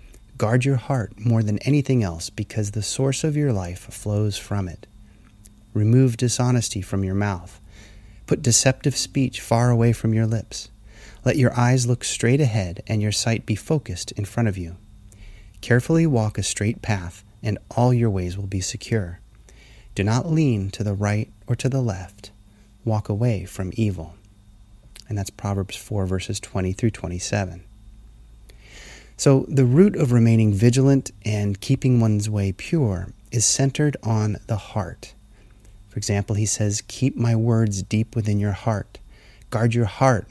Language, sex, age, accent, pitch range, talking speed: English, male, 30-49, American, 100-120 Hz, 160 wpm